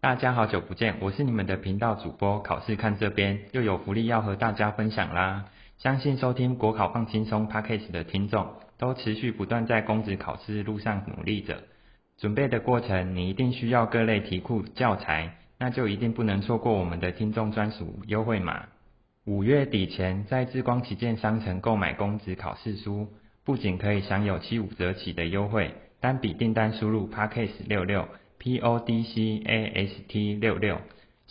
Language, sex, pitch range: Chinese, male, 100-115 Hz